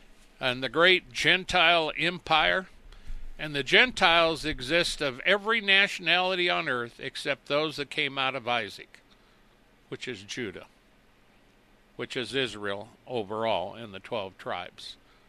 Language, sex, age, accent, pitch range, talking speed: English, male, 60-79, American, 120-160 Hz, 125 wpm